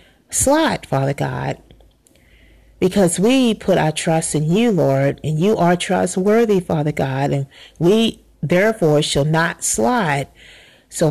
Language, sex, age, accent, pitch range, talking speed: English, female, 40-59, American, 155-200 Hz, 130 wpm